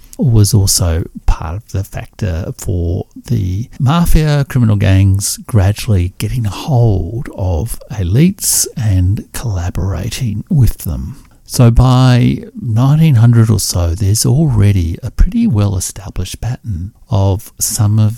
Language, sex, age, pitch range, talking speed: English, male, 60-79, 95-115 Hz, 120 wpm